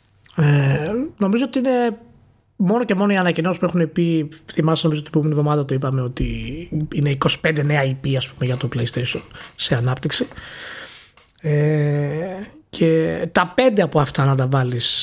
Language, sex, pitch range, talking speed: Greek, male, 135-195 Hz, 150 wpm